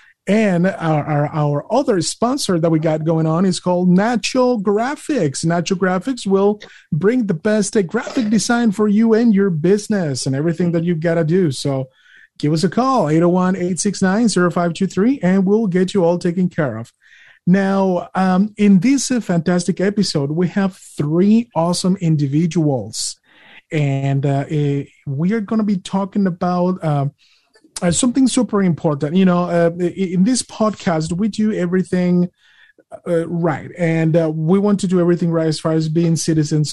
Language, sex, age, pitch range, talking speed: English, male, 30-49, 160-195 Hz, 165 wpm